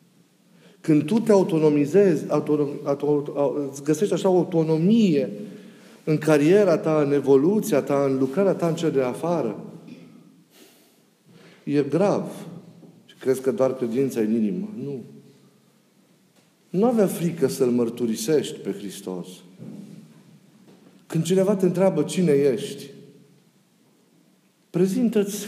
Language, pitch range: Romanian, 140-195 Hz